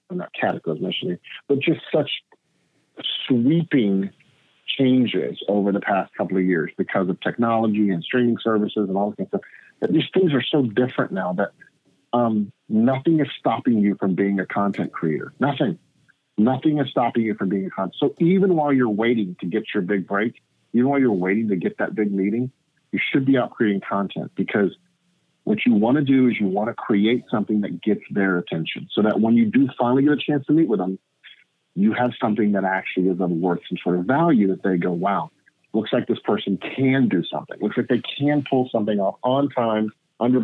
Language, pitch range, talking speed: English, 100-135 Hz, 205 wpm